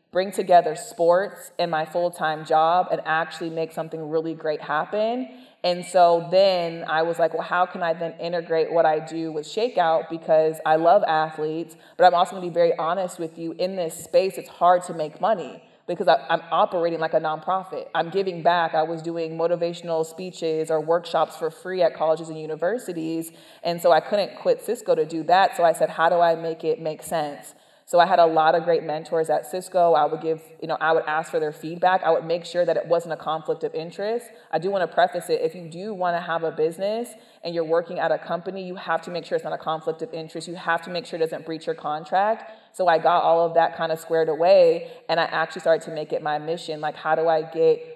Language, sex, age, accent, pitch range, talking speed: English, female, 20-39, American, 160-180 Hz, 235 wpm